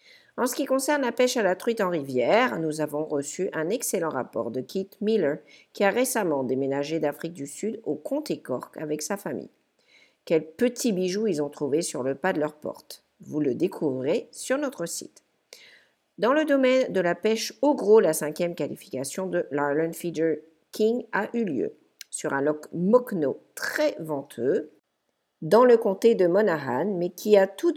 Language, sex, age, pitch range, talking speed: English, female, 50-69, 150-245 Hz, 180 wpm